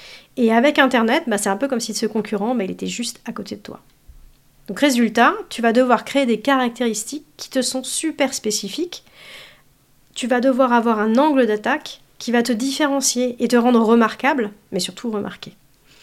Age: 40-59